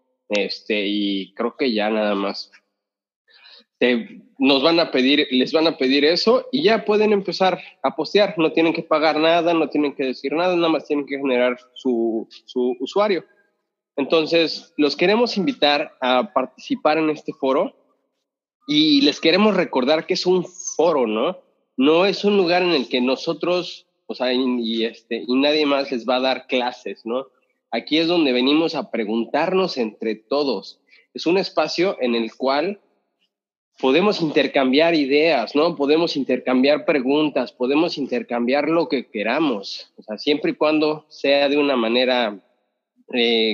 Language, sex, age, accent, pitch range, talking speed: Spanish, male, 30-49, Mexican, 125-170 Hz, 160 wpm